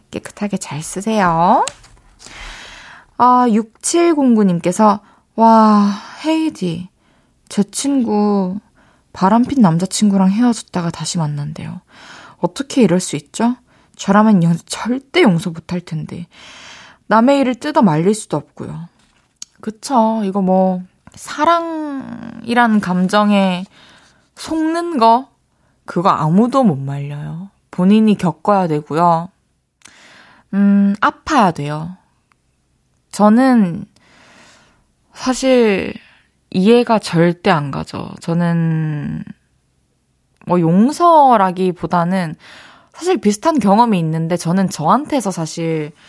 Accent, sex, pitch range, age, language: native, female, 170-230 Hz, 20-39, Korean